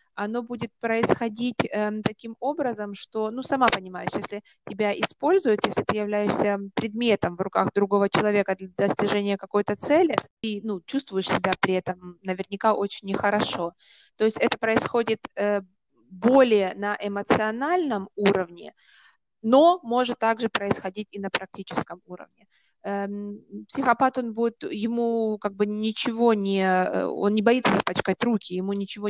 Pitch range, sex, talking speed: 195-235 Hz, female, 135 wpm